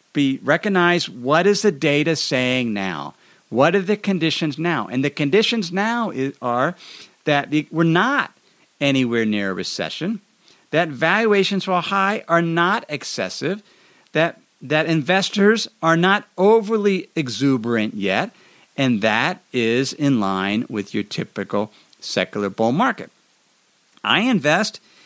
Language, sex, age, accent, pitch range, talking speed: English, male, 50-69, American, 140-200 Hz, 130 wpm